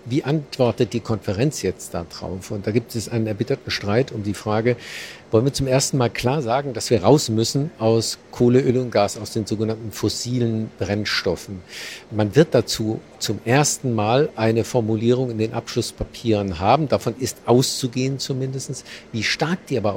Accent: German